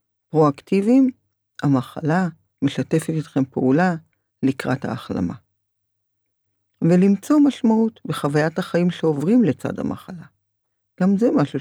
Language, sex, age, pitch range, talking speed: Hebrew, female, 50-69, 120-165 Hz, 90 wpm